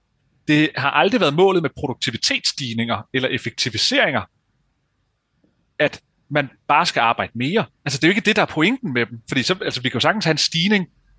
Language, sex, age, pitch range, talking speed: Danish, male, 30-49, 120-165 Hz, 195 wpm